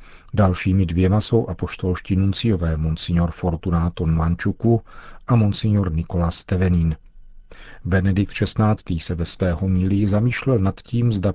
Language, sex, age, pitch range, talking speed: Czech, male, 50-69, 90-115 Hz, 115 wpm